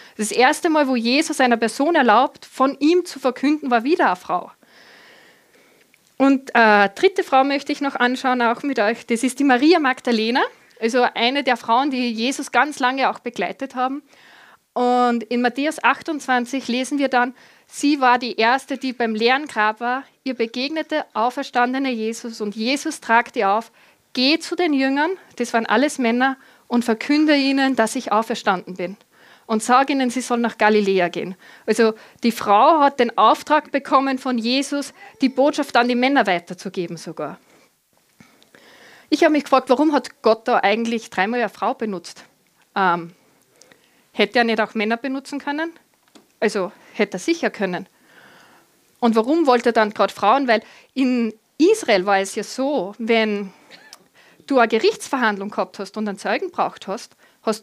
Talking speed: 165 wpm